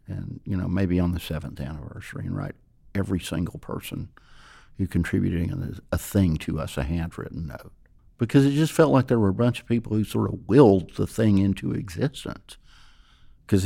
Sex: male